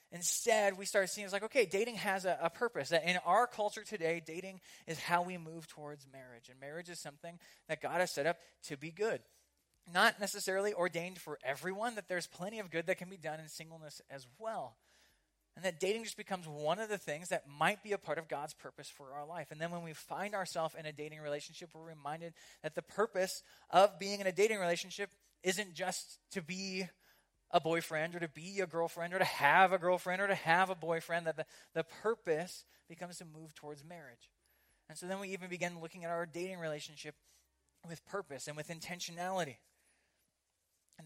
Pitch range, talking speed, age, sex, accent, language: 155-185 Hz, 205 wpm, 20-39, male, American, English